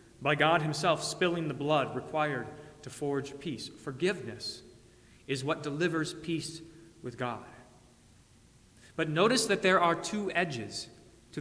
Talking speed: 130 wpm